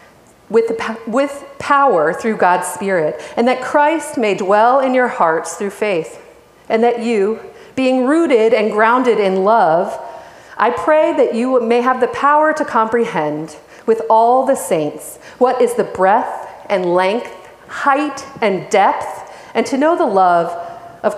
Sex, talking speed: female, 155 wpm